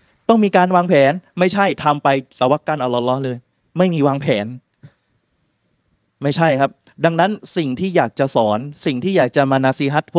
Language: Thai